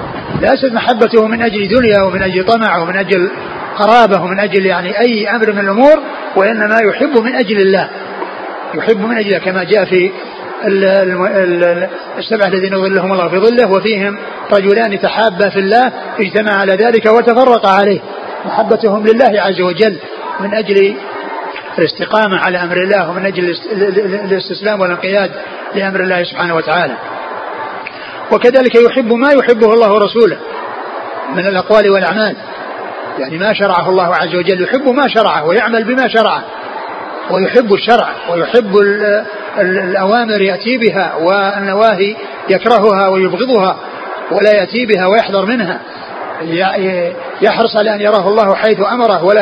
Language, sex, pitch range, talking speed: Arabic, male, 190-225 Hz, 130 wpm